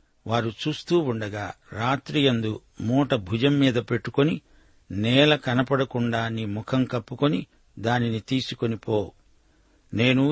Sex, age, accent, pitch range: male, 60-79, native, 115-135 Hz